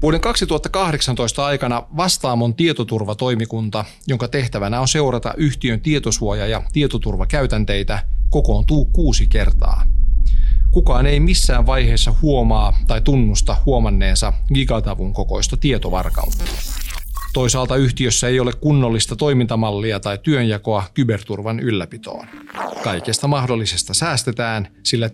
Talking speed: 100 wpm